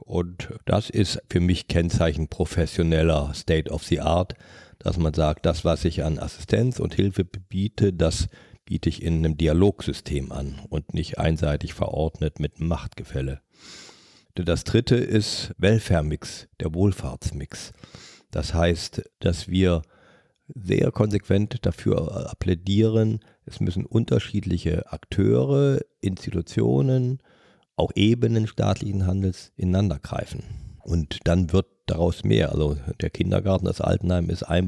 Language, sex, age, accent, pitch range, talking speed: German, male, 50-69, German, 85-105 Hz, 125 wpm